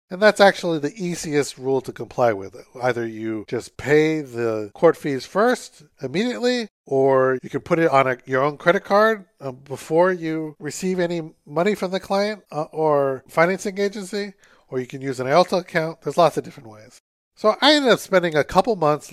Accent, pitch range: American, 135-190 Hz